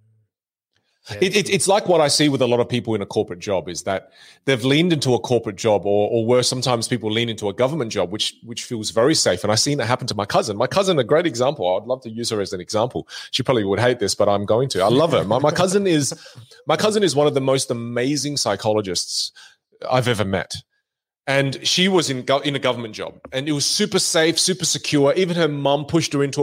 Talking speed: 250 wpm